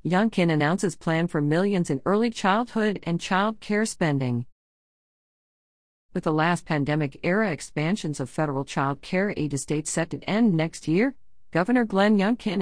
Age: 40-59